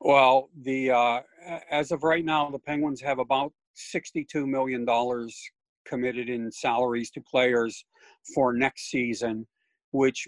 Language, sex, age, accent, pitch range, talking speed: English, male, 50-69, American, 115-140 Hz, 135 wpm